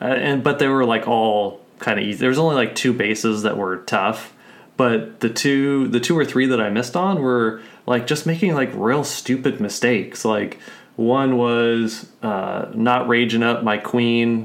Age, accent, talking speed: 20-39, American, 190 wpm